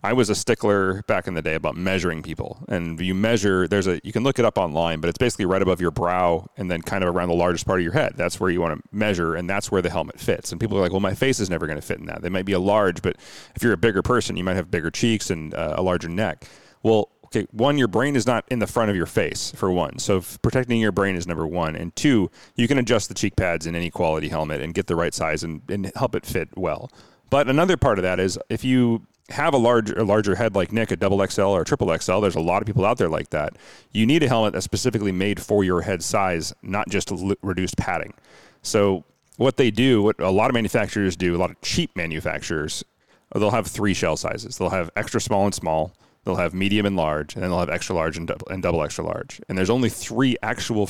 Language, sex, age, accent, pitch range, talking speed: English, male, 30-49, American, 85-110 Hz, 265 wpm